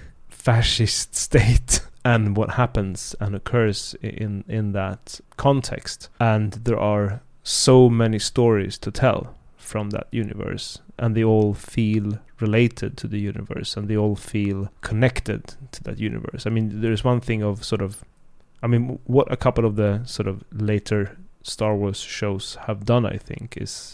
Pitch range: 105-120 Hz